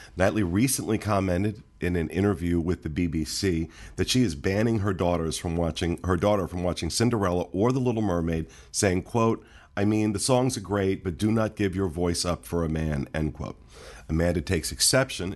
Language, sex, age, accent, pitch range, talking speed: English, male, 50-69, American, 80-100 Hz, 190 wpm